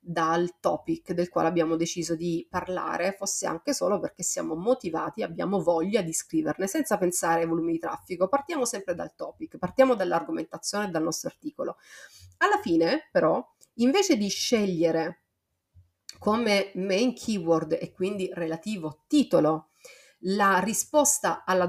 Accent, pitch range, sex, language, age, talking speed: native, 170-225 Hz, female, Italian, 30-49, 135 wpm